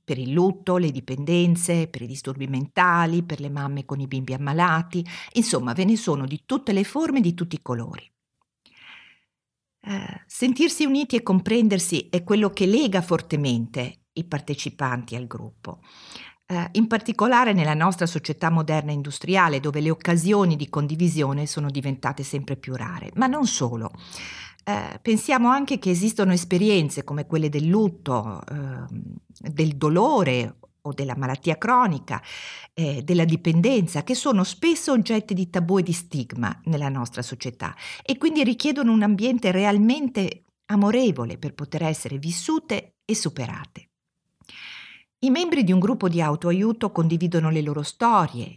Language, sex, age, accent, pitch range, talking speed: Italian, female, 40-59, native, 145-210 Hz, 145 wpm